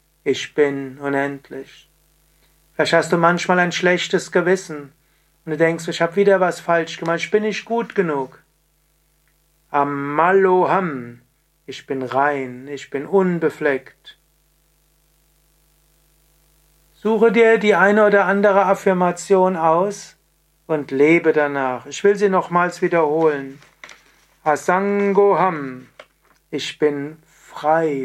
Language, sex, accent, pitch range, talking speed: German, male, German, 145-175 Hz, 110 wpm